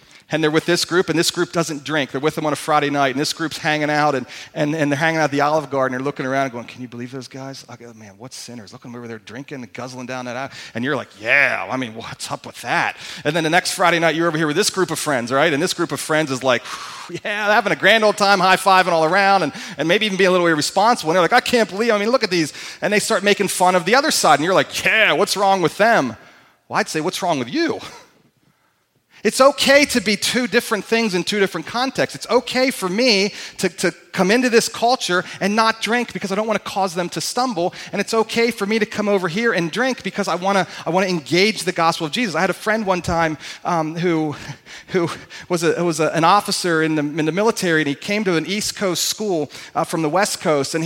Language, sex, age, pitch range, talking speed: English, male, 40-59, 155-210 Hz, 275 wpm